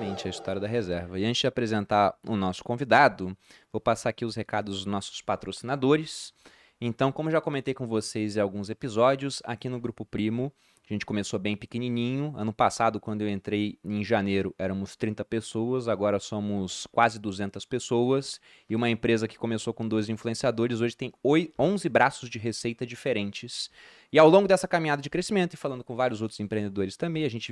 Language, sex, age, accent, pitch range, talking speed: Portuguese, male, 20-39, Brazilian, 105-135 Hz, 180 wpm